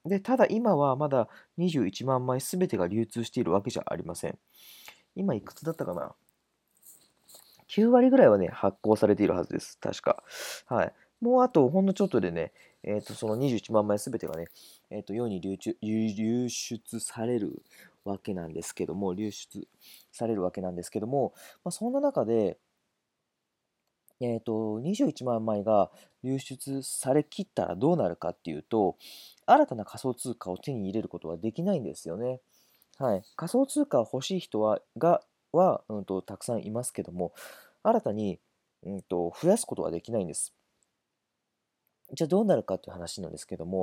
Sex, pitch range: male, 100-150 Hz